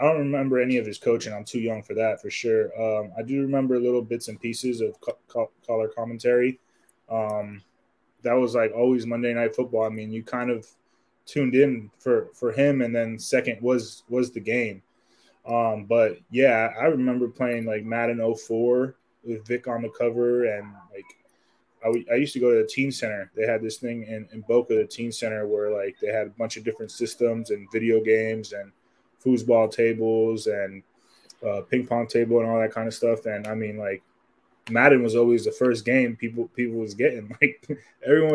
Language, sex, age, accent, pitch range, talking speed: English, male, 20-39, American, 115-130 Hz, 205 wpm